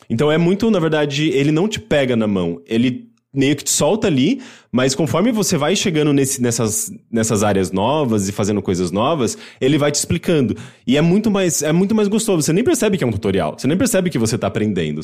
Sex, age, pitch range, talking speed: male, 20-39, 115-175 Hz, 225 wpm